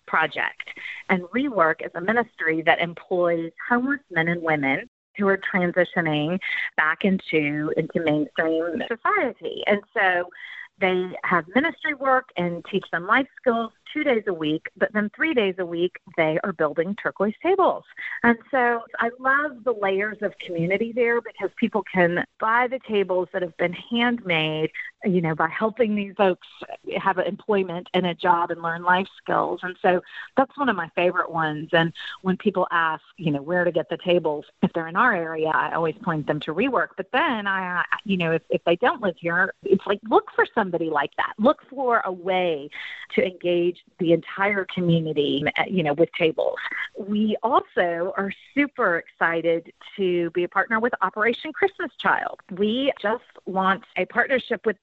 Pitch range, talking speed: 170-230 Hz, 175 wpm